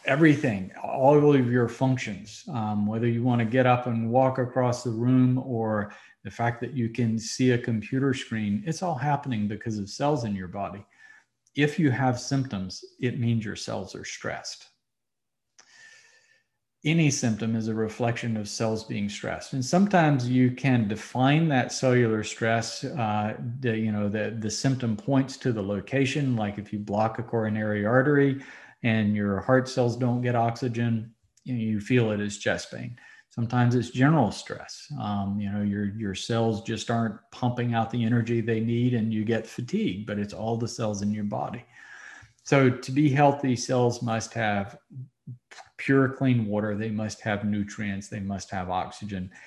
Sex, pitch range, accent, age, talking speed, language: male, 110-130 Hz, American, 50-69, 175 wpm, English